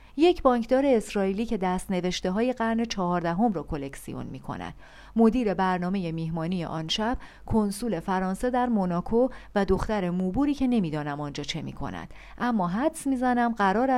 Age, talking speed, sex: 40-59, 160 wpm, female